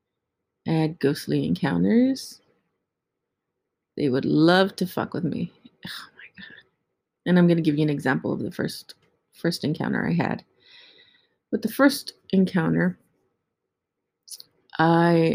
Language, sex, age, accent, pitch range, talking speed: English, female, 30-49, American, 150-190 Hz, 135 wpm